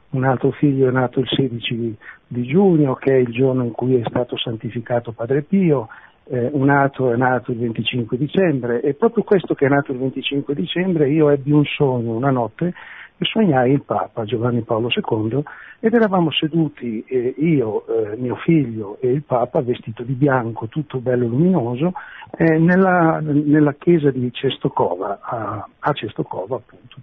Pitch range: 125-160 Hz